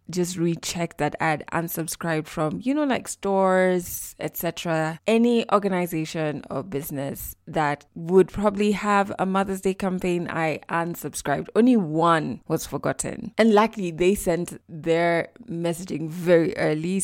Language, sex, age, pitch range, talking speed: English, female, 20-39, 165-220 Hz, 130 wpm